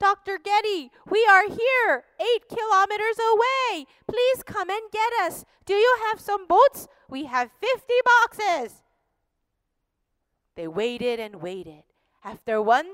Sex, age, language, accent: female, 30-49, Korean, American